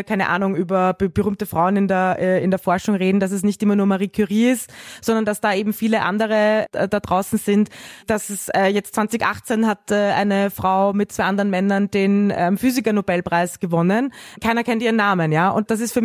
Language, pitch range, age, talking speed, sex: German, 195-225 Hz, 20-39, 190 wpm, female